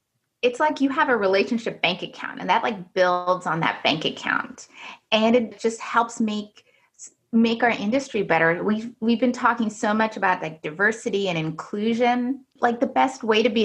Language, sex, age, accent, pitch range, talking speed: English, female, 30-49, American, 190-245 Hz, 185 wpm